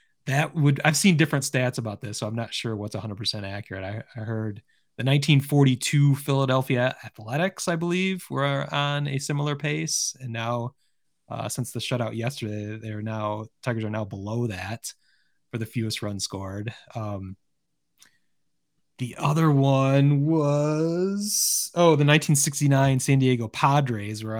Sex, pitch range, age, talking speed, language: male, 110-145 Hz, 20-39, 150 wpm, English